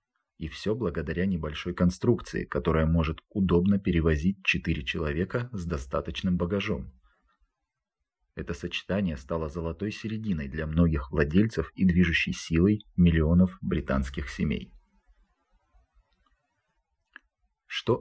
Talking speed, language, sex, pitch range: 95 wpm, Russian, male, 80-95 Hz